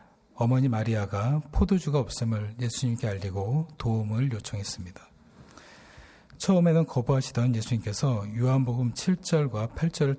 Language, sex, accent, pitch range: Korean, male, native, 105-135 Hz